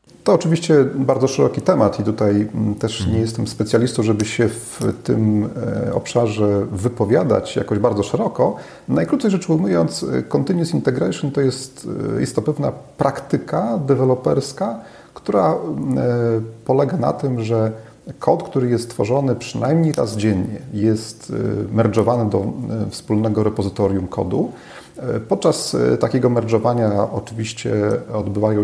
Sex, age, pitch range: male, 30-49, 105-125 Hz